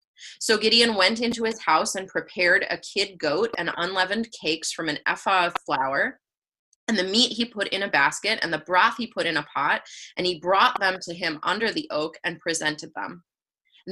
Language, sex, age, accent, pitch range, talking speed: English, female, 20-39, American, 170-225 Hz, 205 wpm